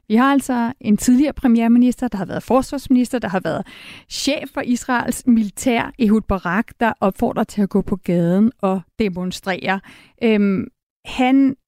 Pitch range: 195-250 Hz